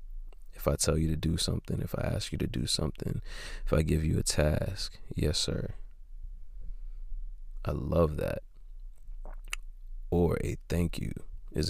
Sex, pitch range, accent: male, 75-95 Hz, American